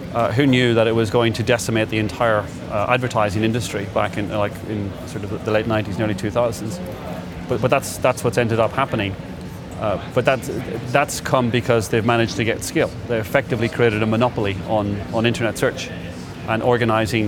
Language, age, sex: English, 30-49, male